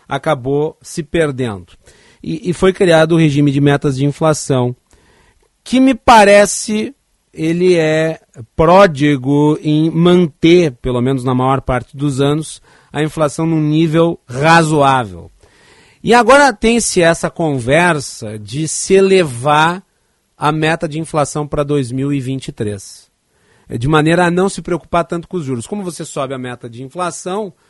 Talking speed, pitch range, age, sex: 140 wpm, 135-175 Hz, 40-59, male